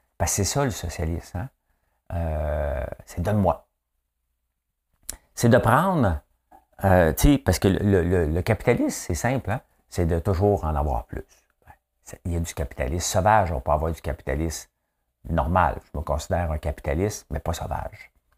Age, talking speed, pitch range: 50-69, 160 wpm, 75-95 Hz